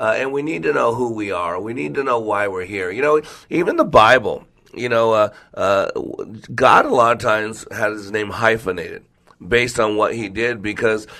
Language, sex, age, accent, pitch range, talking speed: English, male, 40-59, American, 105-130 Hz, 215 wpm